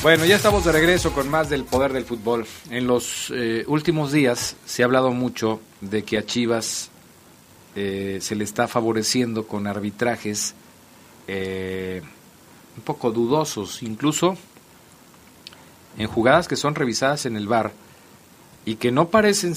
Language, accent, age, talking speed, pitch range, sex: Italian, Mexican, 40-59, 145 wpm, 110-135 Hz, male